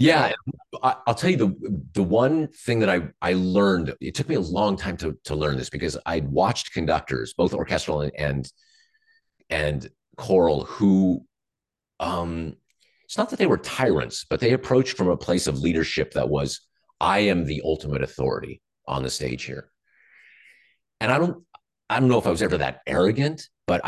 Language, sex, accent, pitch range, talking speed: English, male, American, 65-90 Hz, 180 wpm